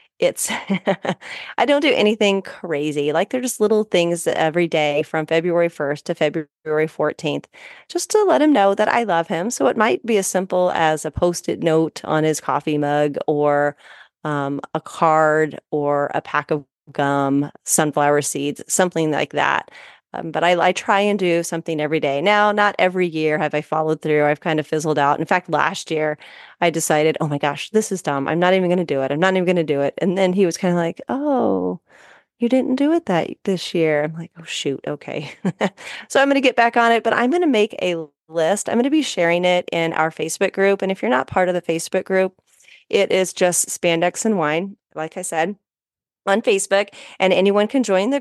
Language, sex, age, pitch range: English, female, 30-49, 150-200 Hz